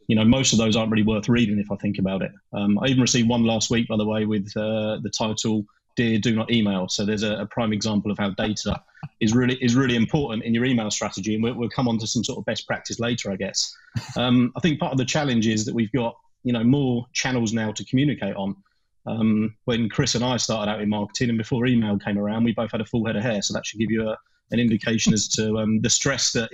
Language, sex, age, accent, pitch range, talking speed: English, male, 30-49, British, 110-120 Hz, 270 wpm